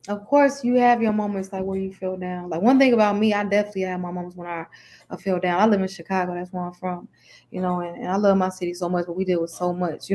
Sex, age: female, 20-39